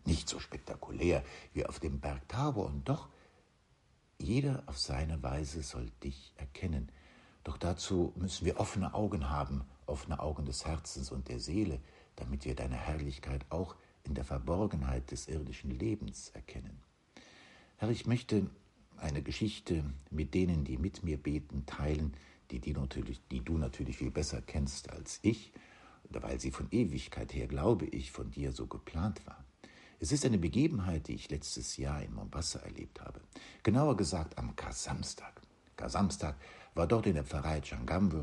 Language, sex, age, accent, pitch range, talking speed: German, male, 60-79, German, 70-90 Hz, 160 wpm